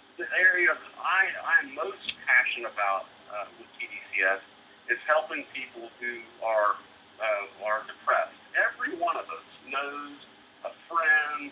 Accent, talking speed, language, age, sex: American, 135 wpm, English, 50-69, male